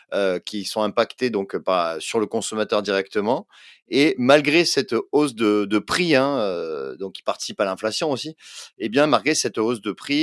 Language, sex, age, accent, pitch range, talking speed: French, male, 30-49, French, 105-140 Hz, 195 wpm